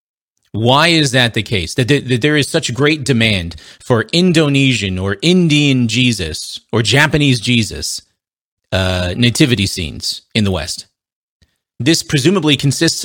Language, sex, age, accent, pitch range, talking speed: English, male, 30-49, American, 105-140 Hz, 135 wpm